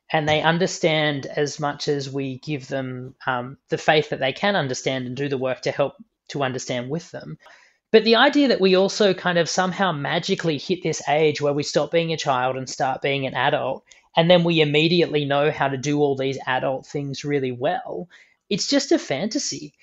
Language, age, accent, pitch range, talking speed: English, 20-39, Australian, 140-175 Hz, 205 wpm